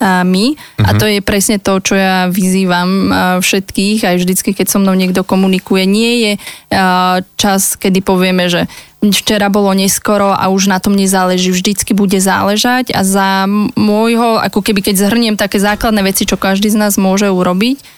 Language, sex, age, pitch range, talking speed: Slovak, female, 20-39, 190-210 Hz, 165 wpm